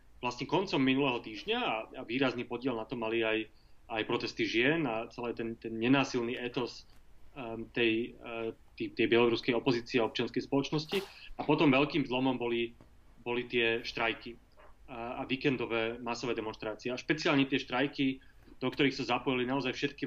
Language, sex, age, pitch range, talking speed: Slovak, male, 30-49, 115-135 Hz, 160 wpm